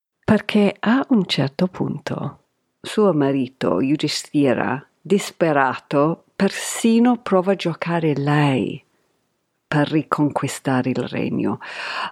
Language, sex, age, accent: Italian, female, 50-69, native